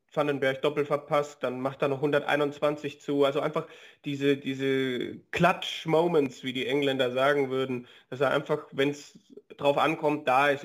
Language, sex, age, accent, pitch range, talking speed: German, male, 30-49, German, 130-150 Hz, 160 wpm